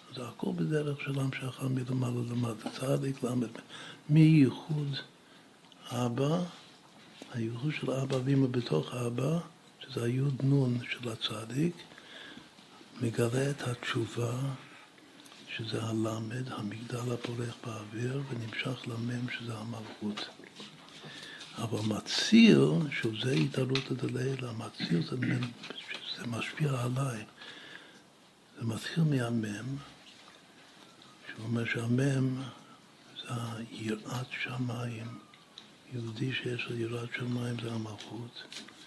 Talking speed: 85 wpm